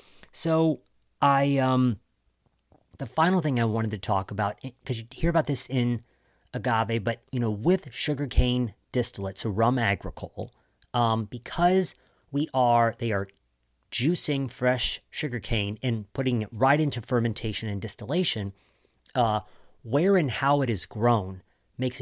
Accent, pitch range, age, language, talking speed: American, 105-135 Hz, 40-59, English, 140 wpm